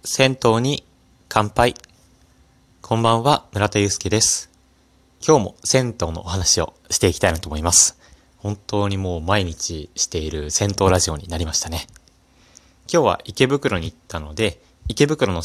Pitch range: 85-115 Hz